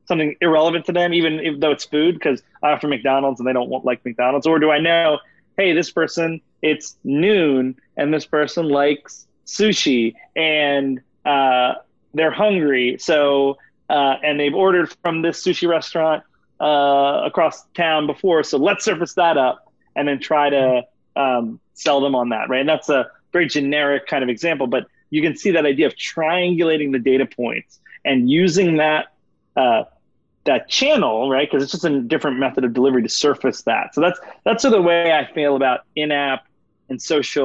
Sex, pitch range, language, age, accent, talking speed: male, 130-165 Hz, English, 30-49, American, 185 wpm